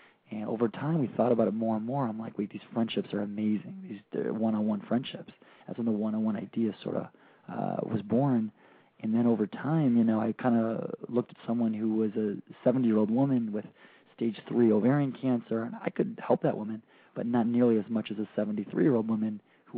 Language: English